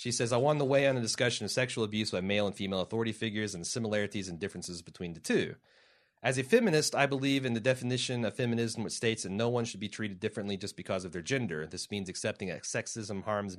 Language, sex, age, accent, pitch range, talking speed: English, male, 30-49, American, 105-135 Hz, 245 wpm